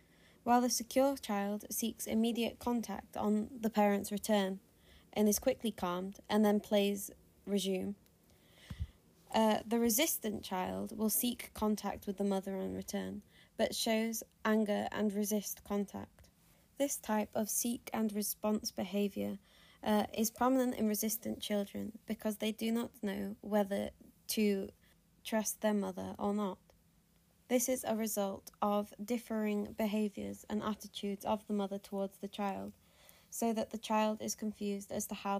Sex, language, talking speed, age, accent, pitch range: female, English, 145 wpm, 20-39, British, 200-225 Hz